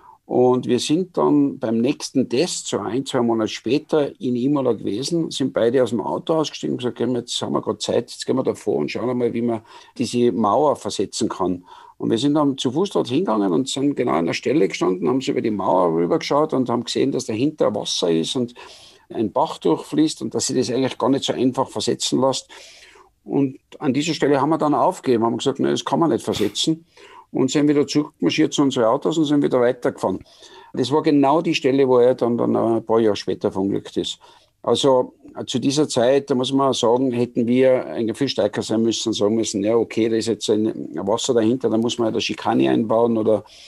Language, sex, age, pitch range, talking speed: German, male, 50-69, 115-140 Hz, 220 wpm